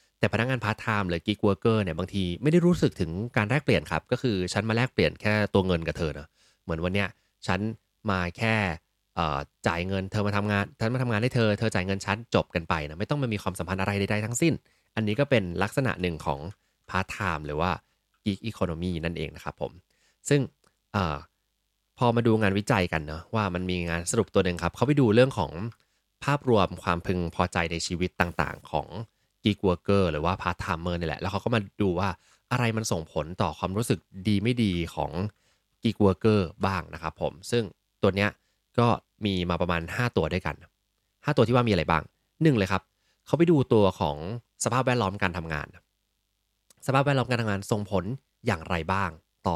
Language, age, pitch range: Thai, 20-39, 90-110 Hz